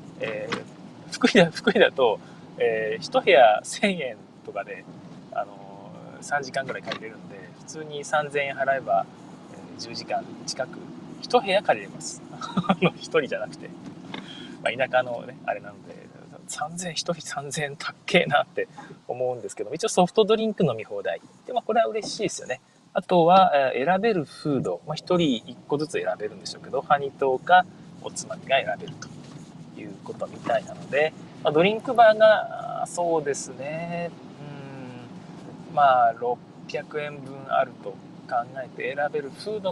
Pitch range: 145-225 Hz